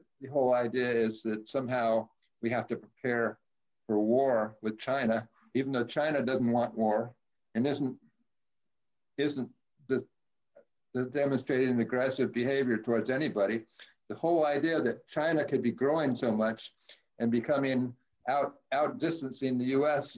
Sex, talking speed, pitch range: male, 135 wpm, 115-135 Hz